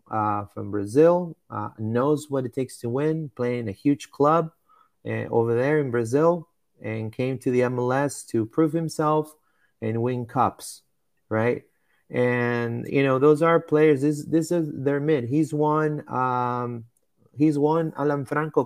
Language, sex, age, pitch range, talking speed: English, male, 30-49, 120-150 Hz, 160 wpm